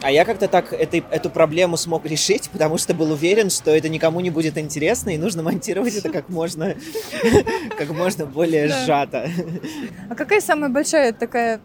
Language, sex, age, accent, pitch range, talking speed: Russian, male, 20-39, native, 125-175 Hz, 175 wpm